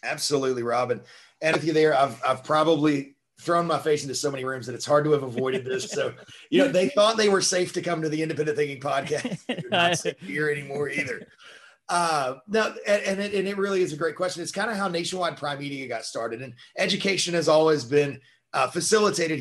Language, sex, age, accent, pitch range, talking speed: English, male, 30-49, American, 140-170 Hz, 215 wpm